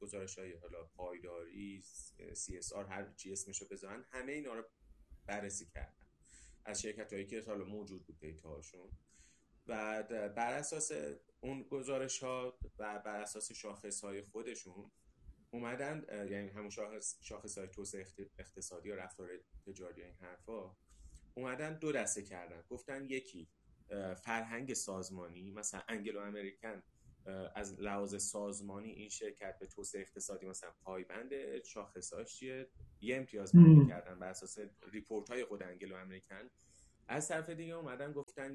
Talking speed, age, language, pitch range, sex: 130 wpm, 30-49, Persian, 95-120 Hz, male